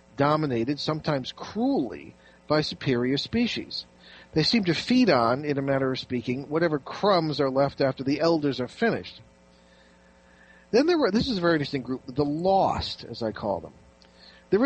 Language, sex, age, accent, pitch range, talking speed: English, male, 50-69, American, 115-165 Hz, 170 wpm